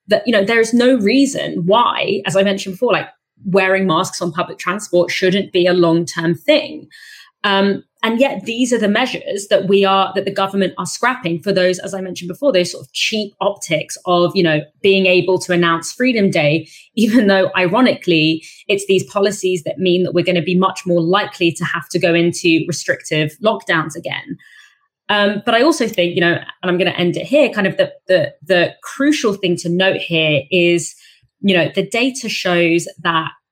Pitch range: 175-220 Hz